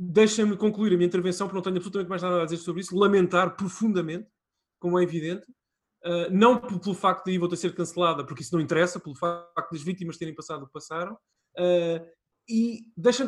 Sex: male